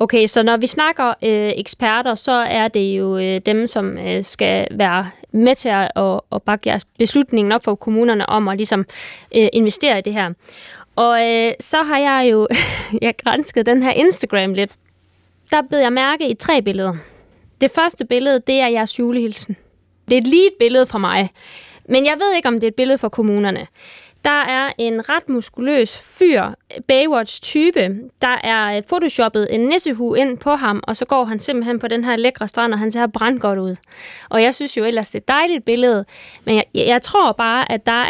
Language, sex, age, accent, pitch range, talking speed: Danish, female, 20-39, native, 210-260 Hz, 200 wpm